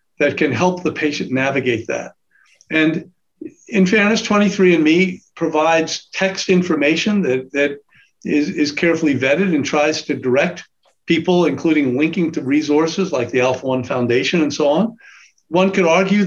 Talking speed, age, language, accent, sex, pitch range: 150 wpm, 50-69, English, American, male, 145-175 Hz